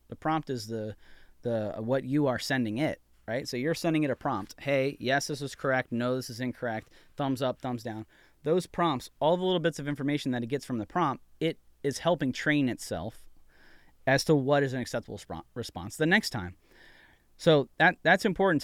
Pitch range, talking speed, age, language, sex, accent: 110-155 Hz, 205 wpm, 30-49, English, male, American